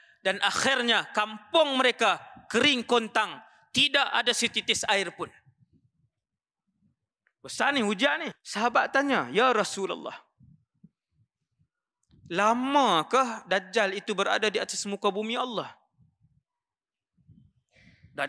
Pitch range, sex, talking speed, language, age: 175-260 Hz, male, 95 wpm, Malay, 20-39